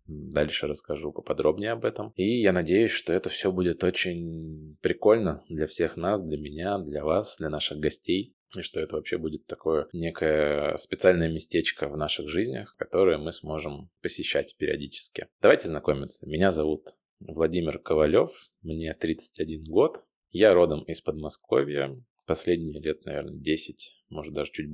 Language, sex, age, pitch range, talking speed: Russian, male, 20-39, 75-85 Hz, 150 wpm